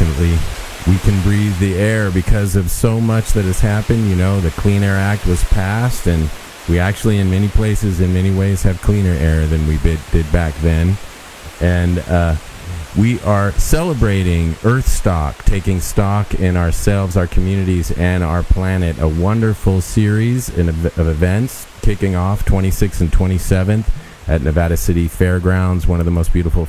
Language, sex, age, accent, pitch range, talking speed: English, male, 30-49, American, 85-105 Hz, 165 wpm